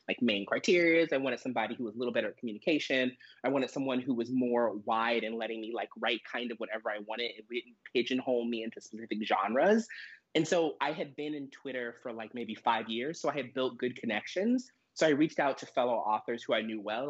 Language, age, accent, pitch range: English, 20-39, American, 120-150 Hz